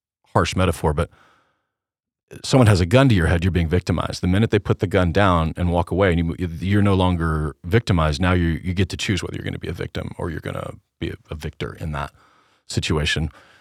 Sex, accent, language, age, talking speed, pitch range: male, American, English, 40-59, 225 wpm, 90-110 Hz